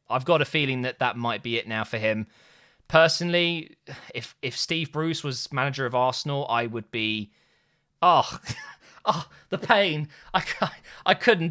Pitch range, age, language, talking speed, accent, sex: 135-190 Hz, 20-39, English, 160 wpm, British, male